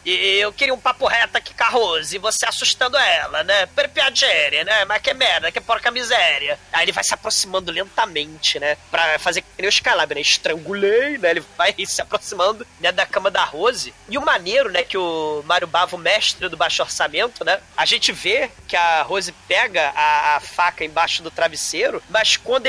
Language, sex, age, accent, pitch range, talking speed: Portuguese, male, 20-39, Brazilian, 165-245 Hz, 190 wpm